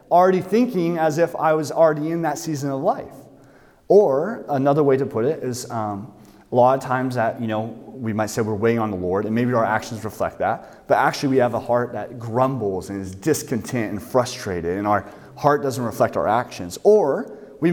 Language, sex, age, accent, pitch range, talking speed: English, male, 30-49, American, 115-145 Hz, 215 wpm